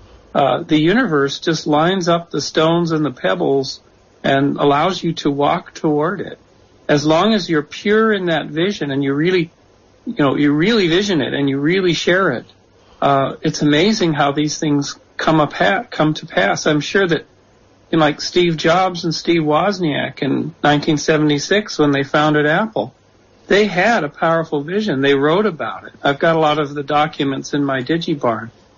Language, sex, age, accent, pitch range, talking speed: English, male, 50-69, American, 145-170 Hz, 180 wpm